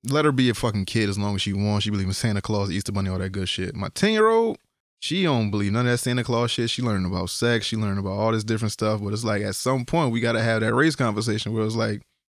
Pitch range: 100-115 Hz